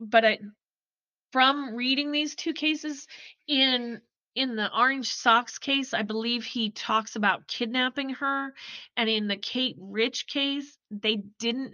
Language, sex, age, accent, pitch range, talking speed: English, female, 30-49, American, 195-240 Hz, 145 wpm